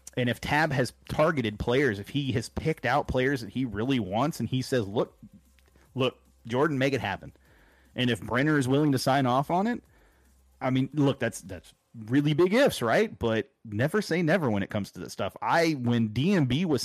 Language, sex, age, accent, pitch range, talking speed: English, male, 30-49, American, 110-145 Hz, 205 wpm